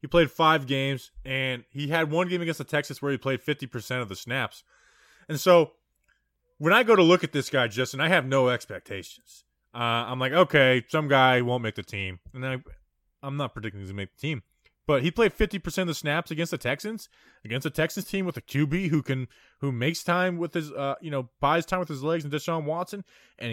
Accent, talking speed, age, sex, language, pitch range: American, 235 wpm, 20-39, male, English, 125-170 Hz